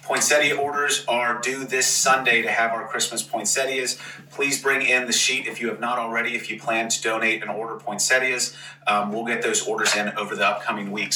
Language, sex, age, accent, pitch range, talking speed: English, male, 30-49, American, 110-130 Hz, 210 wpm